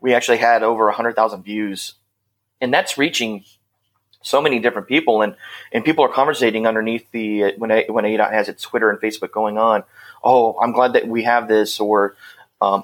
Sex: male